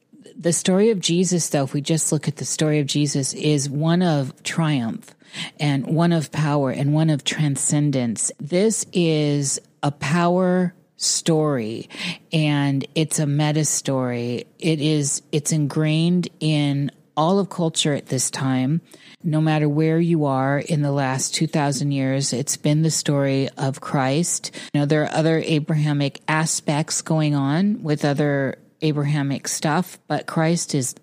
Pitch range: 140-165 Hz